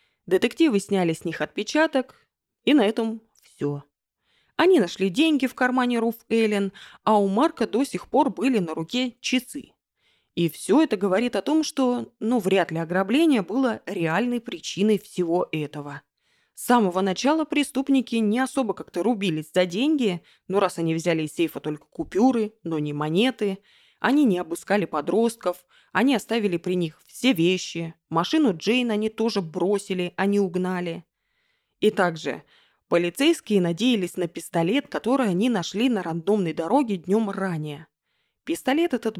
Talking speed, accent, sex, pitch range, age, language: 145 wpm, native, female, 175-250 Hz, 20-39, Russian